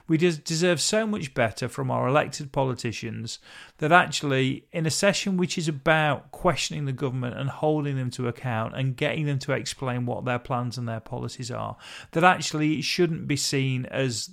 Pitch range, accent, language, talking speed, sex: 125-175 Hz, British, English, 185 wpm, male